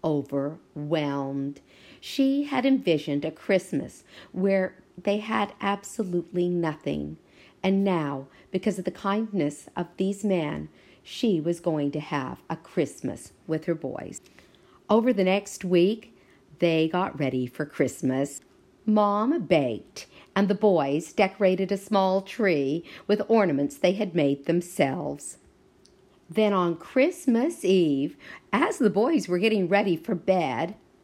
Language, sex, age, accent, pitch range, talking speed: English, female, 50-69, American, 155-210 Hz, 130 wpm